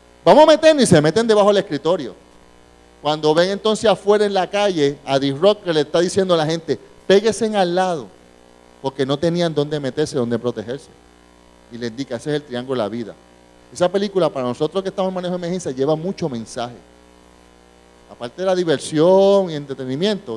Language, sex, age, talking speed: English, male, 30-49, 190 wpm